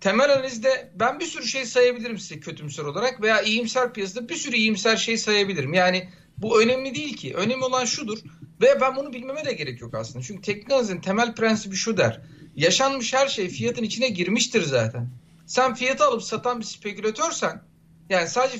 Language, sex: Turkish, male